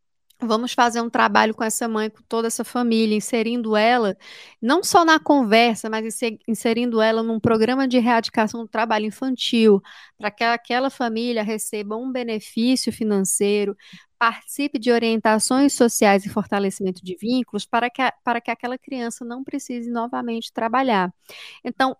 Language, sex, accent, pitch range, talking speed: Portuguese, female, Brazilian, 200-245 Hz, 145 wpm